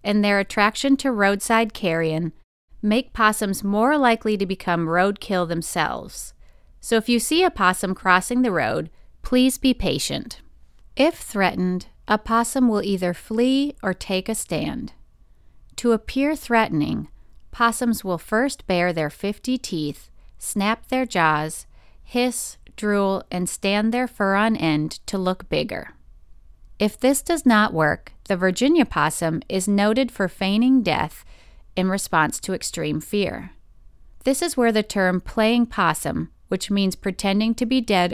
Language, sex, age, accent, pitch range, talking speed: English, female, 30-49, American, 170-230 Hz, 145 wpm